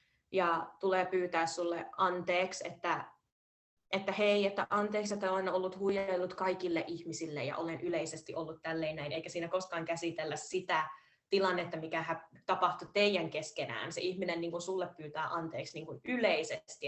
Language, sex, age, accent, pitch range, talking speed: Finnish, female, 20-39, native, 160-185 Hz, 150 wpm